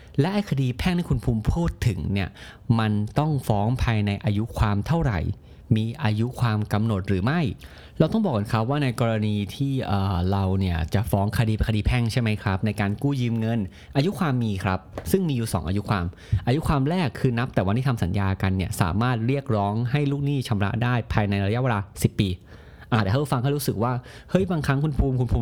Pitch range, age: 100-135 Hz, 30-49